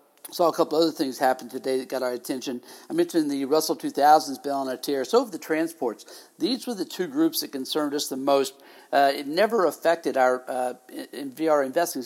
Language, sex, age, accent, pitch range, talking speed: English, male, 60-79, American, 140-180 Hz, 215 wpm